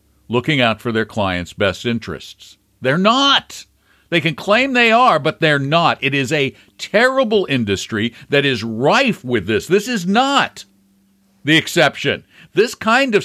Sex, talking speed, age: male, 160 wpm, 50-69